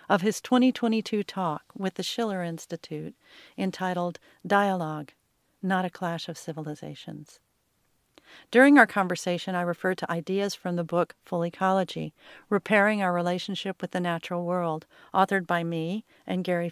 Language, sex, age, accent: English, female, 40-59, American